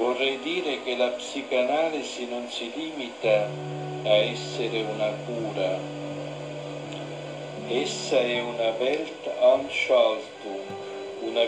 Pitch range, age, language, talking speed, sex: 110-140 Hz, 50-69, Italian, 90 wpm, male